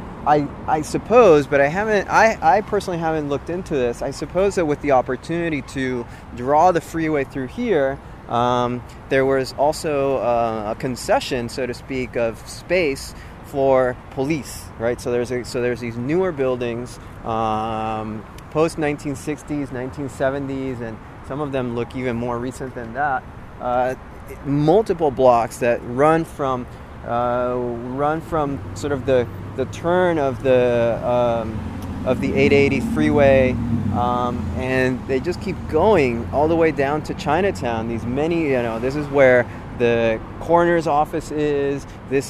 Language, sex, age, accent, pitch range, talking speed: English, male, 20-39, American, 120-145 Hz, 150 wpm